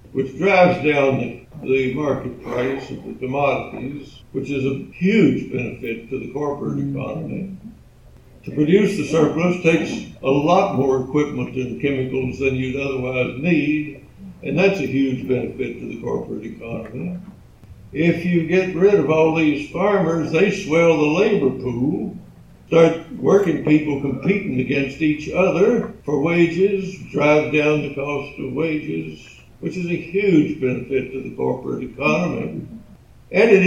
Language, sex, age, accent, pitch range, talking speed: English, male, 60-79, American, 135-170 Hz, 145 wpm